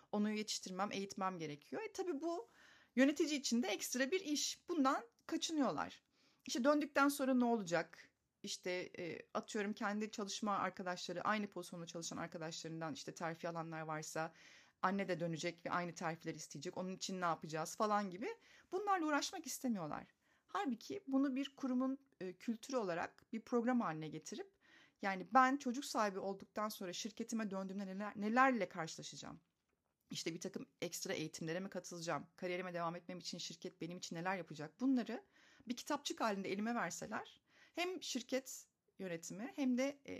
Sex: female